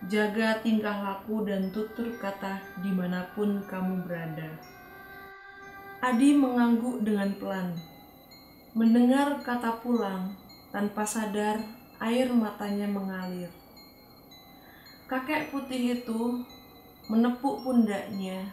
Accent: native